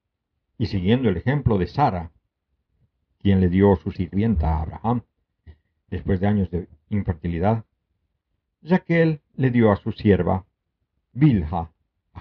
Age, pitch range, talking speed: 60-79, 85-115 Hz, 130 wpm